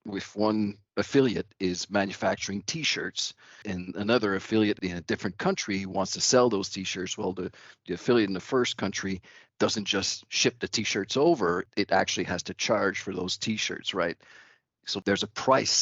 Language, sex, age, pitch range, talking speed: English, male, 50-69, 90-110 Hz, 170 wpm